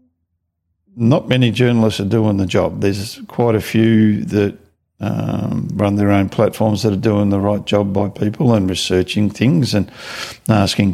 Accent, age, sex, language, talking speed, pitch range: Australian, 50-69, male, English, 165 wpm, 100-115 Hz